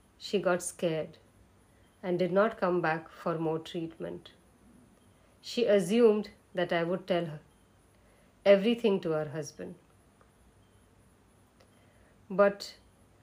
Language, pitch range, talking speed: English, 150-200 Hz, 105 wpm